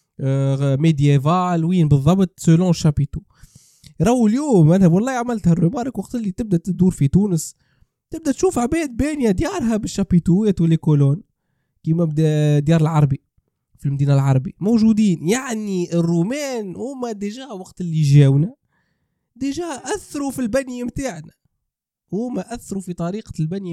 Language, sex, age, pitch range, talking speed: Arabic, male, 20-39, 150-200 Hz, 125 wpm